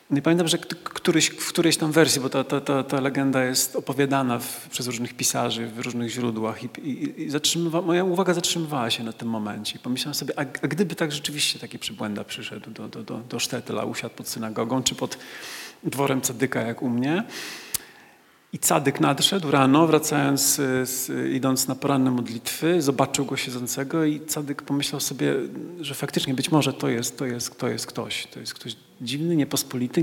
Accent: native